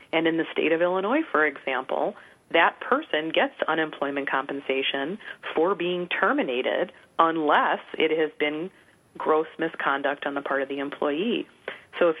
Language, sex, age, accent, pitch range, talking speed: English, female, 30-49, American, 145-180 Hz, 150 wpm